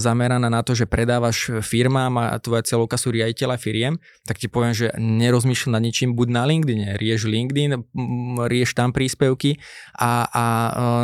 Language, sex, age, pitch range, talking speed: Slovak, male, 20-39, 115-130 Hz, 165 wpm